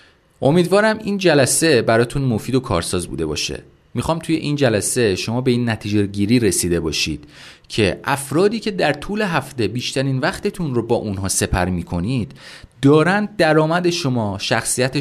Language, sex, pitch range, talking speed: Persian, male, 110-160 Hz, 150 wpm